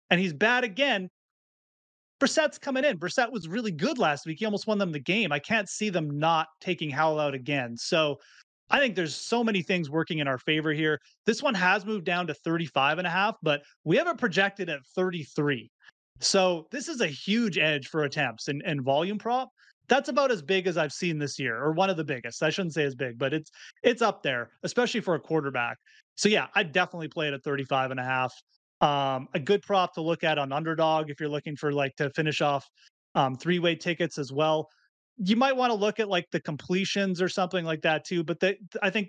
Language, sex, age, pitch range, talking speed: English, male, 30-49, 145-190 Hz, 225 wpm